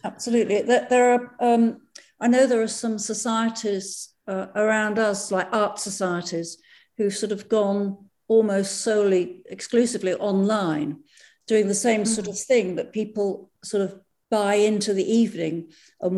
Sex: female